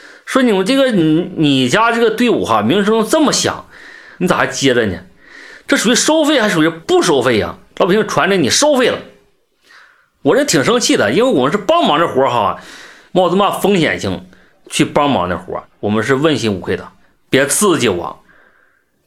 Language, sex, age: Chinese, male, 30-49